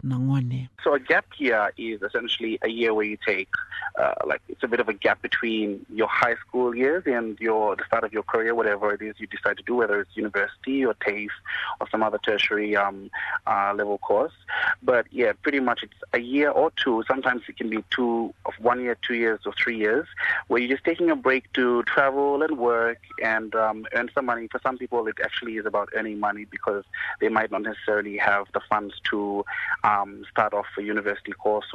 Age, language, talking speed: 30-49, English, 215 wpm